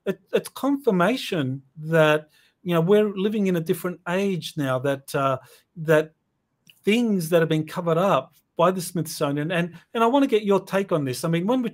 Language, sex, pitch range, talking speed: English, male, 145-185 Hz, 195 wpm